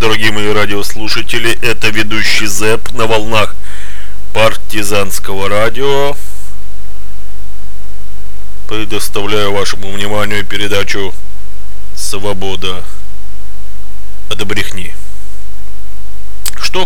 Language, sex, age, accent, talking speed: Russian, male, 20-39, native, 60 wpm